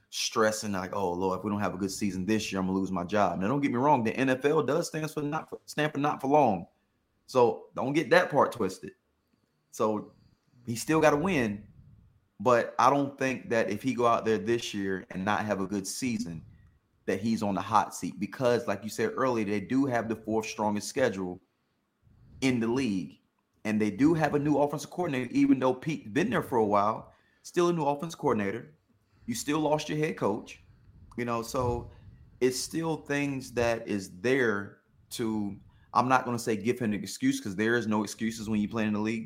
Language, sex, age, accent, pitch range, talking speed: English, male, 30-49, American, 105-130 Hz, 215 wpm